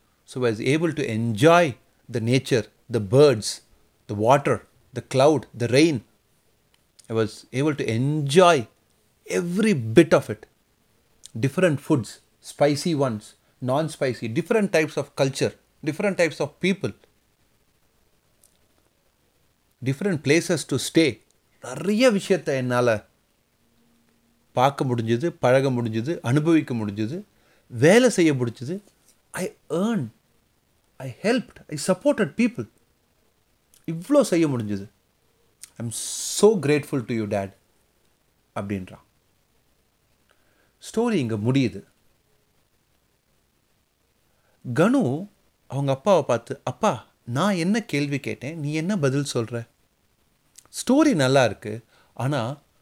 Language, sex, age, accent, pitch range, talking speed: Tamil, male, 30-49, native, 115-165 Hz, 110 wpm